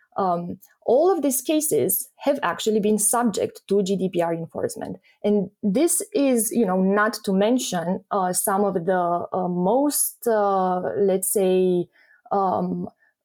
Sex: female